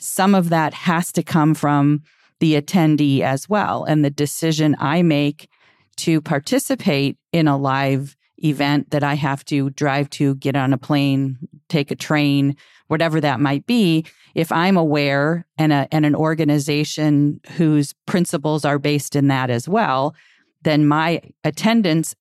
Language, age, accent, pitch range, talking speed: English, 40-59, American, 140-160 Hz, 155 wpm